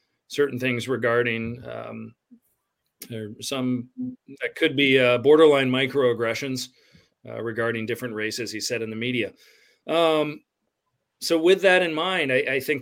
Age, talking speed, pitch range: 40-59, 140 wpm, 115-145 Hz